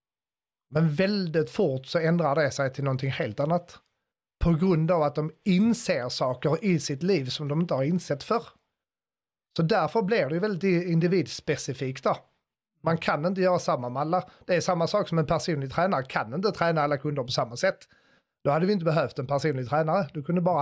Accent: native